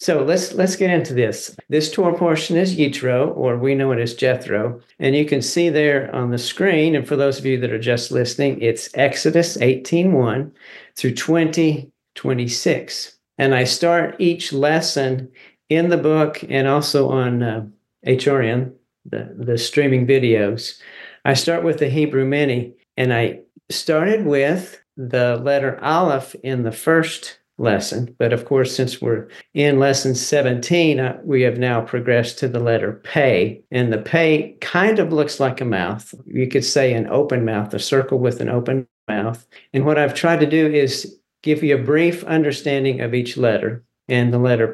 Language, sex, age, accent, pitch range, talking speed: English, male, 50-69, American, 120-150 Hz, 175 wpm